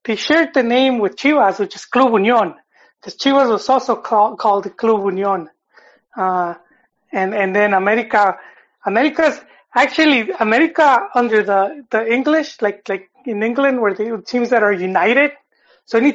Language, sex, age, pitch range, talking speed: English, male, 30-49, 200-240 Hz, 155 wpm